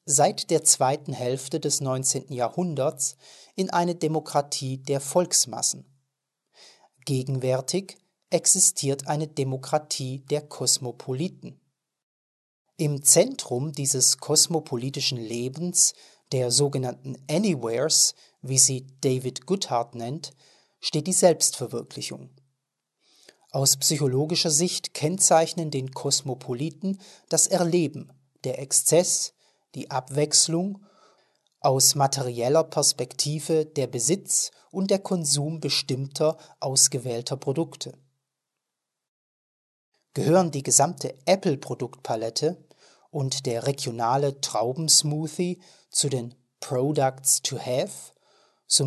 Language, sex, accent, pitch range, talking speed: German, male, German, 130-165 Hz, 90 wpm